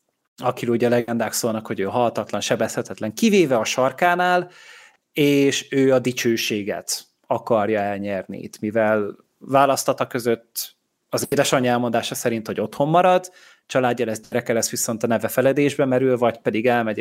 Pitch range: 115-135 Hz